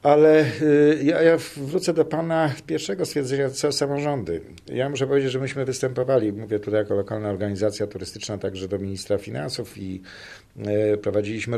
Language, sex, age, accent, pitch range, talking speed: Polish, male, 50-69, native, 110-140 Hz, 140 wpm